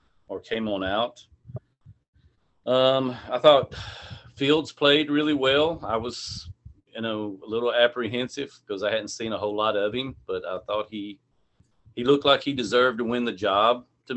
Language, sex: English, male